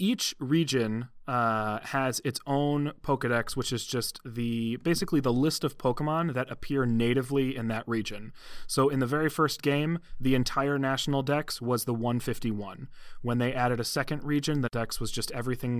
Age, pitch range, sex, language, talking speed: 30-49, 115-140 Hz, male, English, 175 wpm